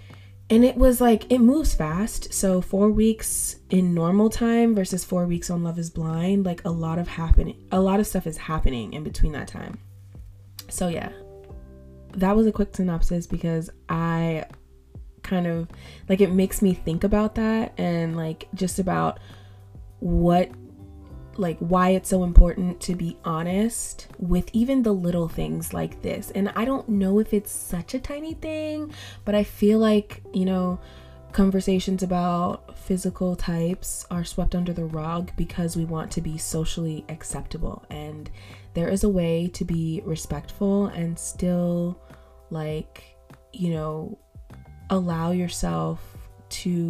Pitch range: 155-190 Hz